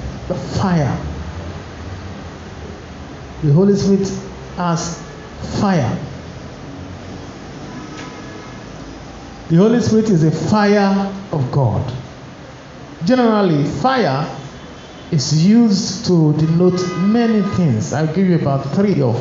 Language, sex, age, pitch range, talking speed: English, male, 50-69, 130-170 Hz, 85 wpm